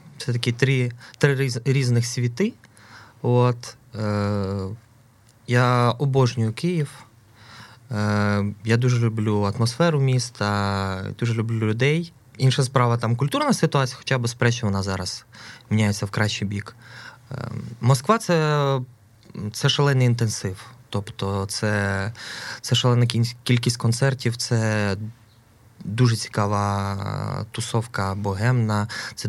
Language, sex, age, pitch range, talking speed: Ukrainian, male, 20-39, 105-125 Hz, 110 wpm